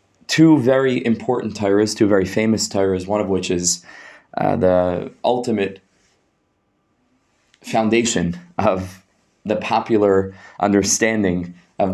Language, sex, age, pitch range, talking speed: English, male, 20-39, 95-125 Hz, 105 wpm